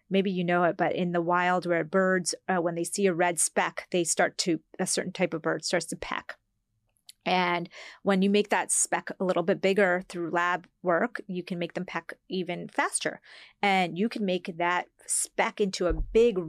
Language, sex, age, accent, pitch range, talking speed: English, female, 30-49, American, 175-205 Hz, 205 wpm